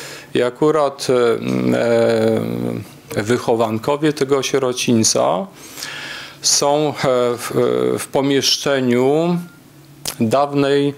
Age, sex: 40-59, male